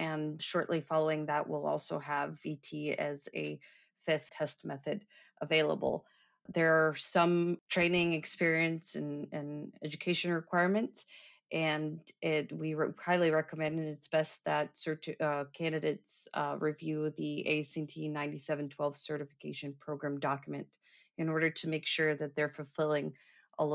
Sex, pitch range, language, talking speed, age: female, 150-175 Hz, English, 135 wpm, 30-49